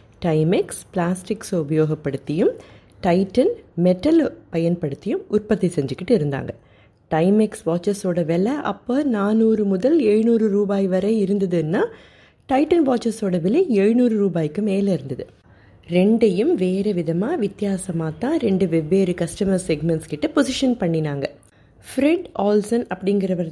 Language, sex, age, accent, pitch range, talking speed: Tamil, female, 30-49, native, 165-220 Hz, 70 wpm